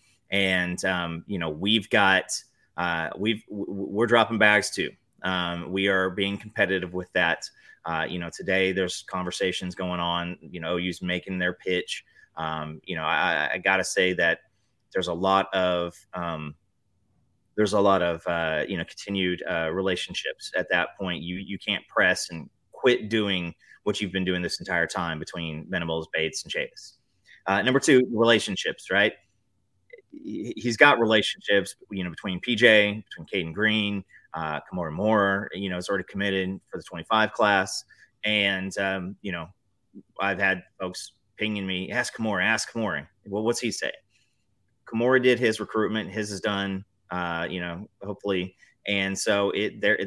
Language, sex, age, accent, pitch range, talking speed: English, male, 30-49, American, 90-105 Hz, 165 wpm